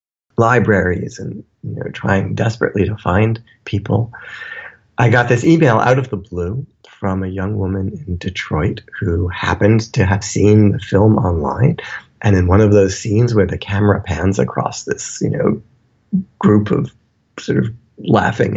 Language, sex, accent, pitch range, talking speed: English, male, American, 100-125 Hz, 160 wpm